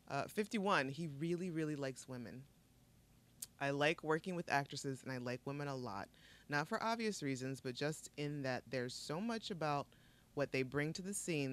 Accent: American